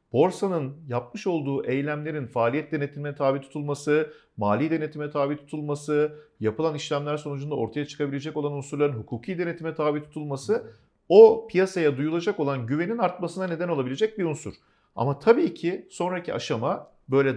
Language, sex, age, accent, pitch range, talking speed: Turkish, male, 50-69, native, 145-180 Hz, 135 wpm